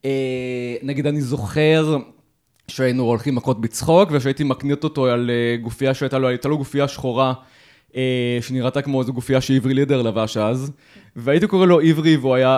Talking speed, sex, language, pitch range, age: 110 wpm, male, Hebrew, 125-155 Hz, 20-39